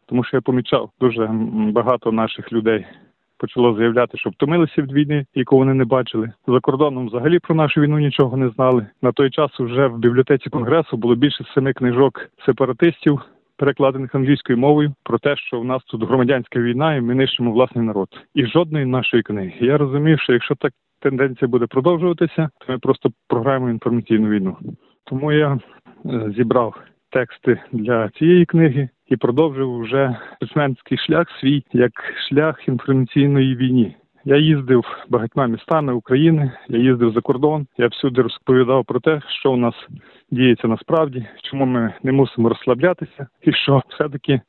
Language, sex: Ukrainian, male